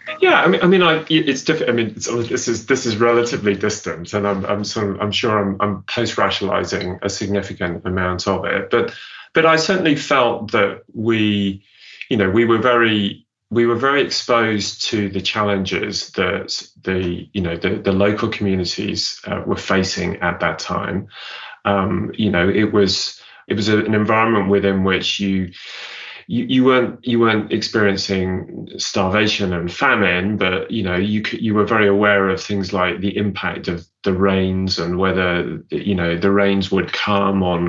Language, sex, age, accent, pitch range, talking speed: English, male, 30-49, British, 95-105 Hz, 180 wpm